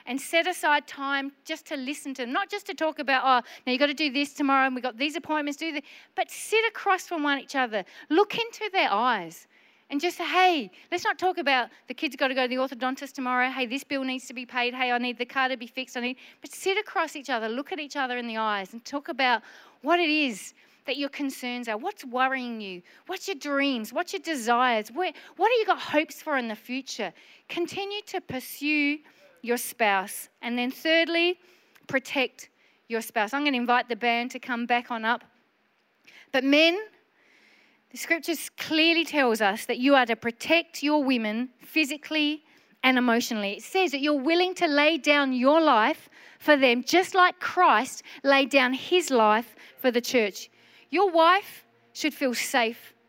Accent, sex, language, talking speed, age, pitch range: Australian, female, English, 205 wpm, 40-59, 245-320 Hz